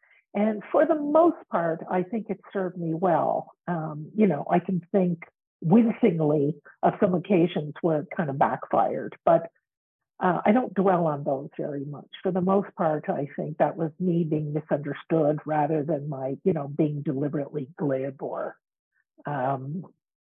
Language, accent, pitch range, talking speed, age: English, American, 155-200 Hz, 165 wpm, 50-69